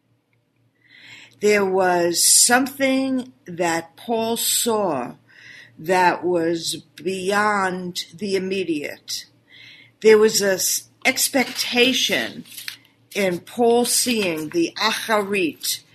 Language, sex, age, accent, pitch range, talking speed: English, female, 50-69, American, 175-230 Hz, 75 wpm